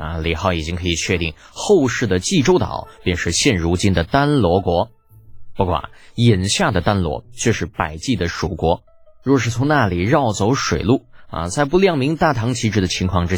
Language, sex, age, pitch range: Chinese, male, 20-39, 85-120 Hz